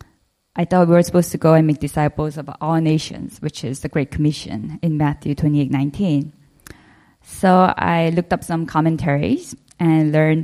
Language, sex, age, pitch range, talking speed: English, female, 20-39, 150-190 Hz, 170 wpm